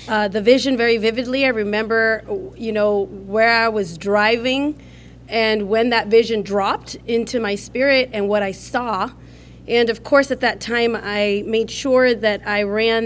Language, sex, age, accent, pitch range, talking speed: English, female, 30-49, American, 205-240 Hz, 170 wpm